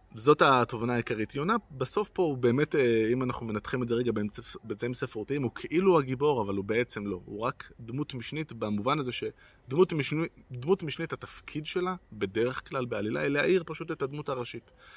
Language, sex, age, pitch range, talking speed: Hebrew, male, 20-39, 110-140 Hz, 170 wpm